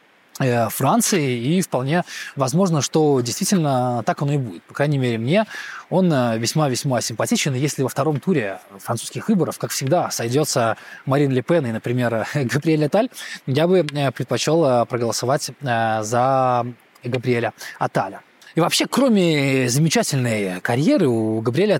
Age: 20-39